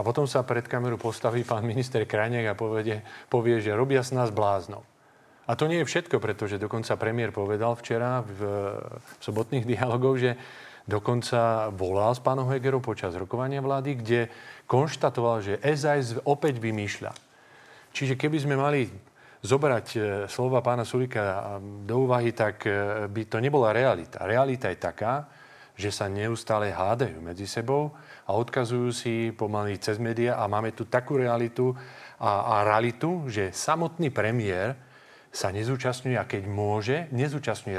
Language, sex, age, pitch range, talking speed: Slovak, male, 40-59, 105-130 Hz, 145 wpm